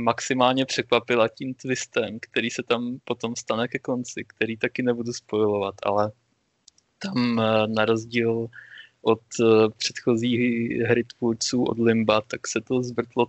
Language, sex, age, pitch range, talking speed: Czech, male, 20-39, 110-125 Hz, 130 wpm